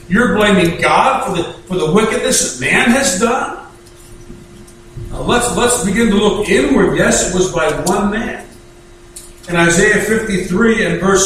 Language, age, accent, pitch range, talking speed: English, 50-69, American, 185-215 Hz, 160 wpm